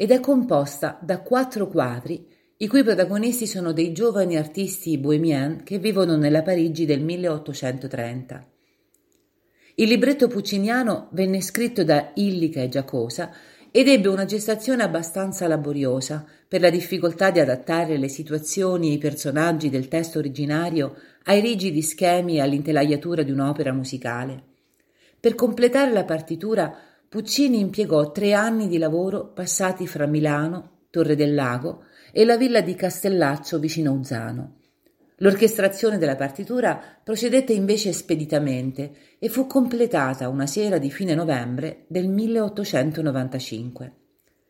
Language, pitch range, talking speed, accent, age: Italian, 150-205 Hz, 130 wpm, native, 40-59